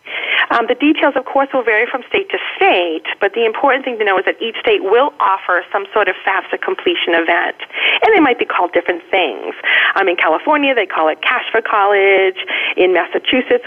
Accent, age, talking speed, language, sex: American, 40-59, 205 wpm, English, female